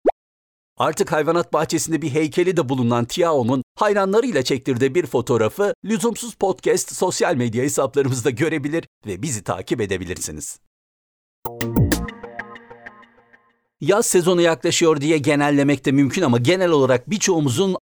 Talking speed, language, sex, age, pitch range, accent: 110 wpm, Turkish, male, 60-79, 115-170 Hz, native